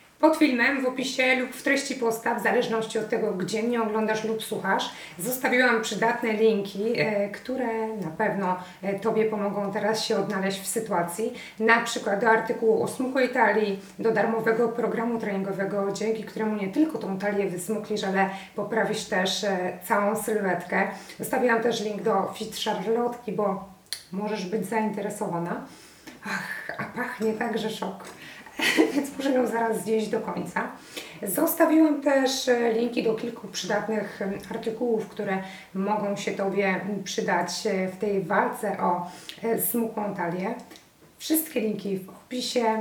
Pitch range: 200-230 Hz